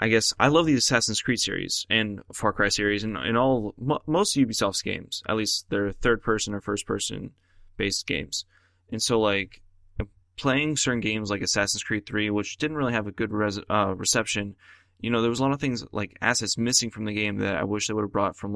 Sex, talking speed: male, 230 wpm